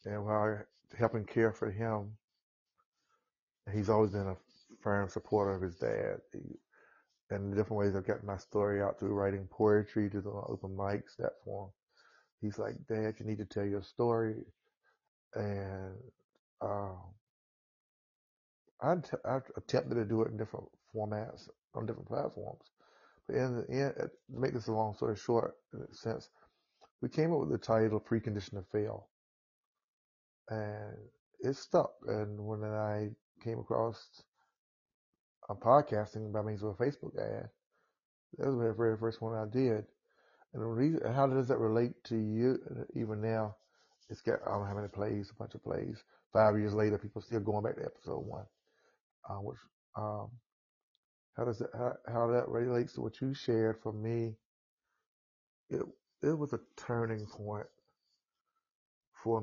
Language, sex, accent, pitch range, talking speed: English, male, American, 105-115 Hz, 165 wpm